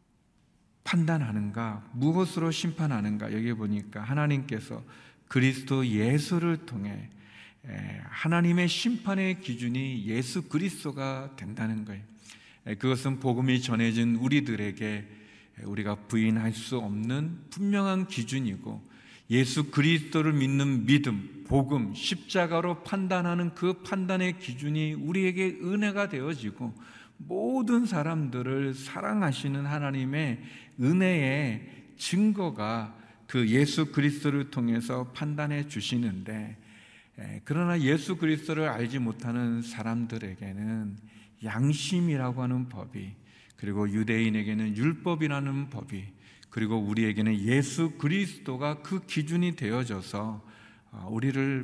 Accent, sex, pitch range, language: native, male, 110-155 Hz, Korean